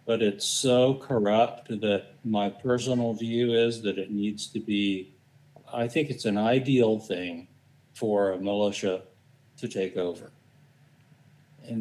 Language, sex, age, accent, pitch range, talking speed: English, male, 60-79, American, 105-145 Hz, 135 wpm